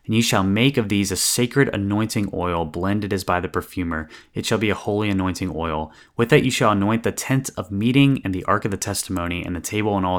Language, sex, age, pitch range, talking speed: English, male, 20-39, 90-115 Hz, 245 wpm